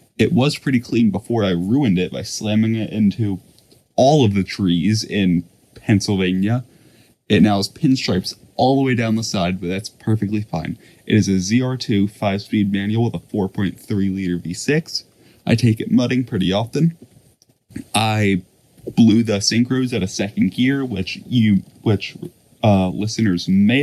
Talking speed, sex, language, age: 160 wpm, male, English, 20-39